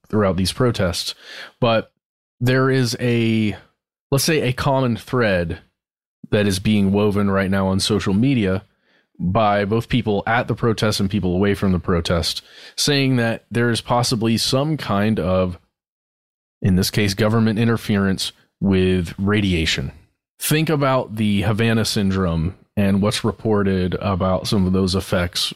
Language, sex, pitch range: English, male, 95-115 Hz